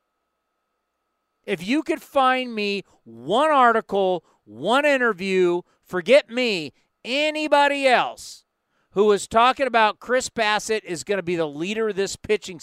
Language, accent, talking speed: English, American, 135 wpm